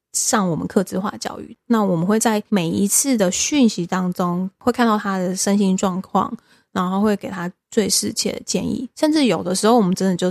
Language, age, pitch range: Chinese, 20-39, 190-220 Hz